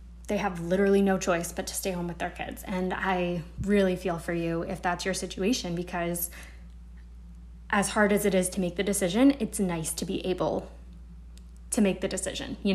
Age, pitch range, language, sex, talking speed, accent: 20-39, 175-210 Hz, English, female, 200 wpm, American